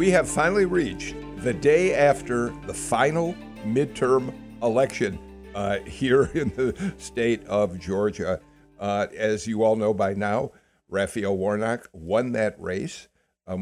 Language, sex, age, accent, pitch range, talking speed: English, male, 60-79, American, 100-120 Hz, 135 wpm